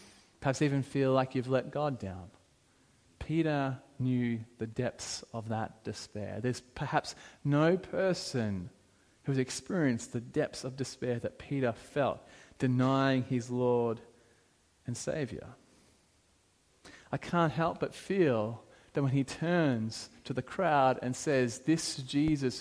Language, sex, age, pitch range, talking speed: English, male, 30-49, 110-140 Hz, 135 wpm